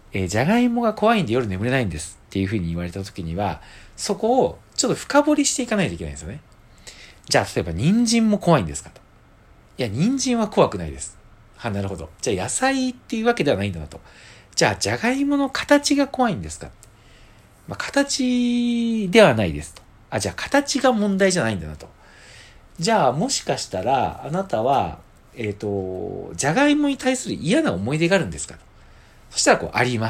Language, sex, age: Japanese, male, 40-59